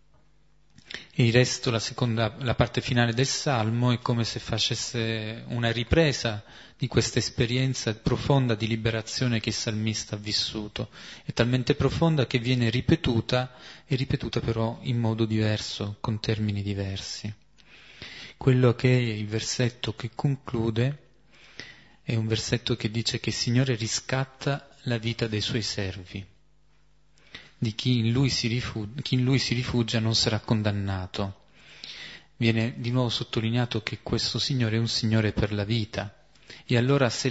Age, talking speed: 30-49, 150 wpm